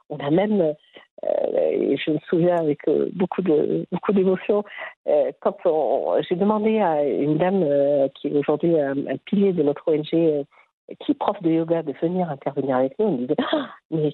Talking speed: 205 wpm